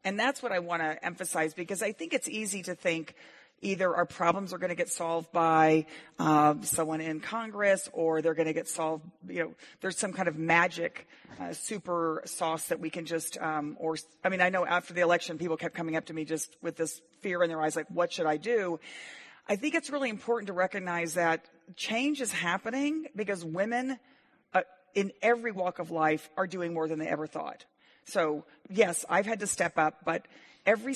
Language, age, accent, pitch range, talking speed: English, 40-59, American, 165-195 Hz, 210 wpm